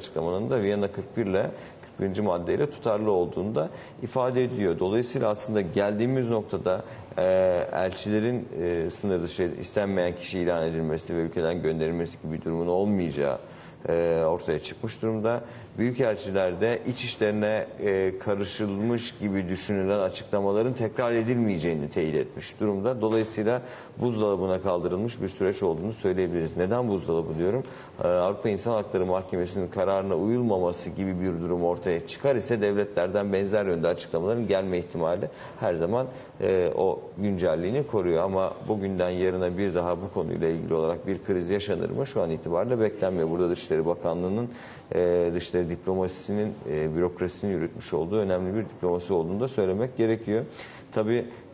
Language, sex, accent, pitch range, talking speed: Turkish, male, native, 90-110 Hz, 135 wpm